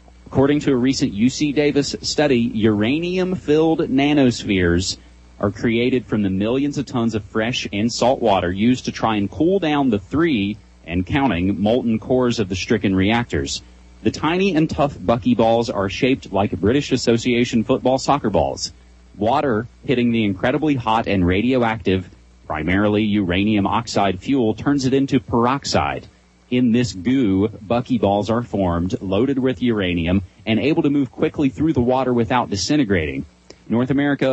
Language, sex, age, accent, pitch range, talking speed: English, male, 30-49, American, 95-130 Hz, 150 wpm